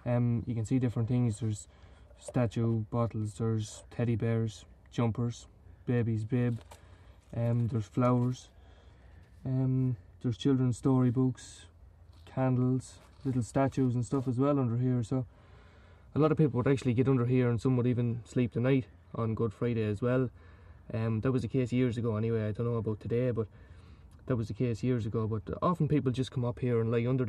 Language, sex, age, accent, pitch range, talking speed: English, male, 20-39, Irish, 100-130 Hz, 180 wpm